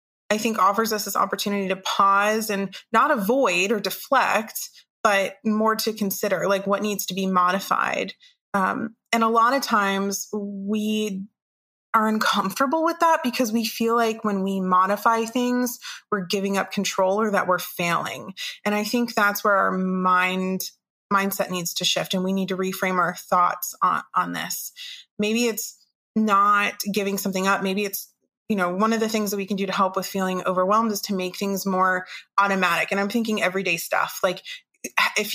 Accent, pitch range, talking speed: American, 195-230 Hz, 180 wpm